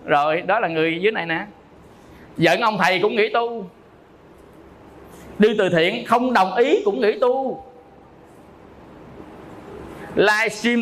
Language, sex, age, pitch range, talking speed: Vietnamese, male, 20-39, 150-235 Hz, 130 wpm